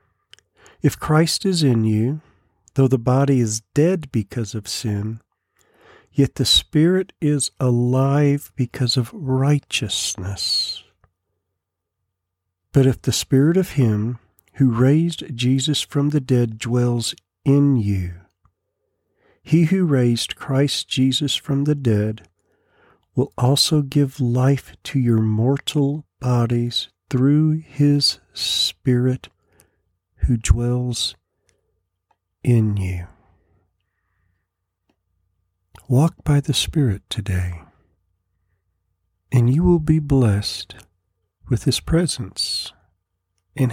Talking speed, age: 100 wpm, 50-69